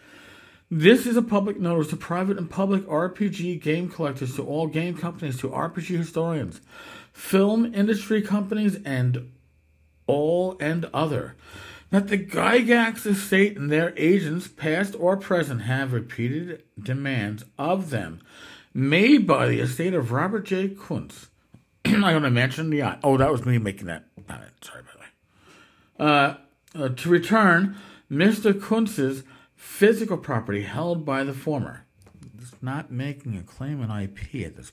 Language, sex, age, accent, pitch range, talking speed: English, male, 50-69, American, 130-185 Hz, 150 wpm